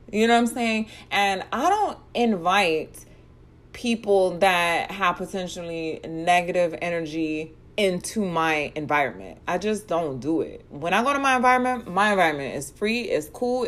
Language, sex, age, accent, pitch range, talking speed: English, female, 30-49, American, 175-240 Hz, 155 wpm